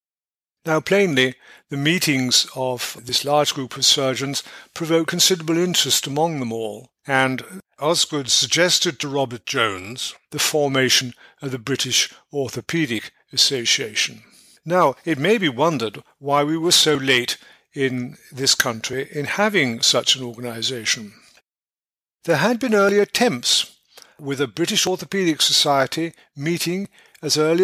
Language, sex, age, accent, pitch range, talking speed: English, male, 50-69, British, 135-180 Hz, 130 wpm